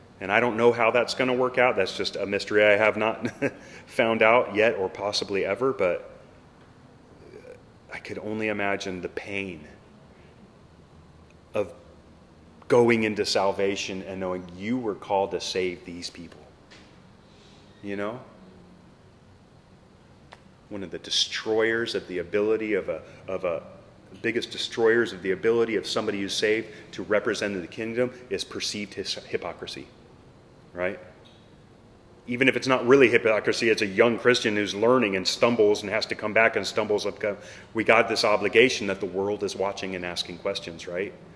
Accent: American